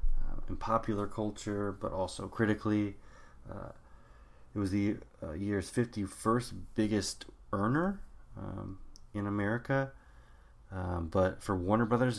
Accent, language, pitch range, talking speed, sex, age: American, English, 85-110 Hz, 115 wpm, male, 30-49